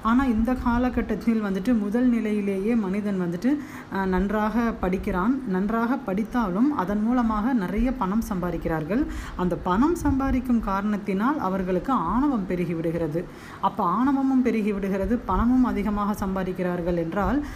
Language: Tamil